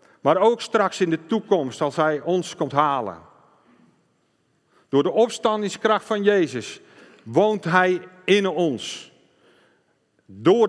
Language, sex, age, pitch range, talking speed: Dutch, male, 50-69, 125-170 Hz, 120 wpm